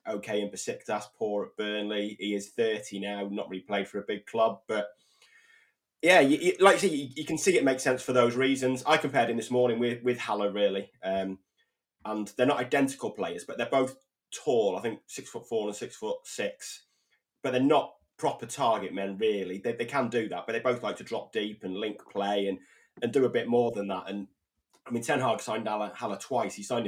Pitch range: 95-125 Hz